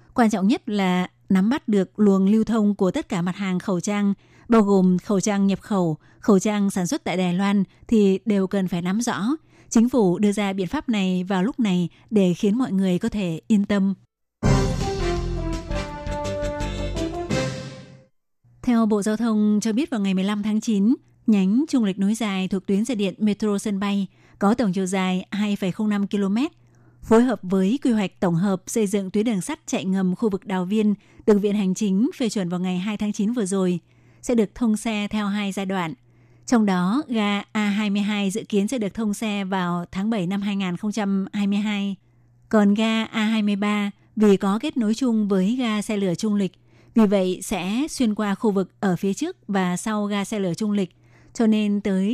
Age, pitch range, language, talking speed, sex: 20-39, 190-215 Hz, Vietnamese, 210 wpm, female